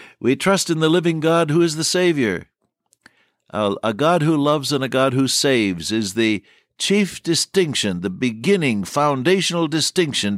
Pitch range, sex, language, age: 100-135 Hz, male, English, 60-79